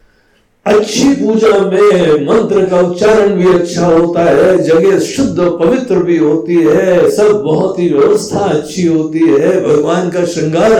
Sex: male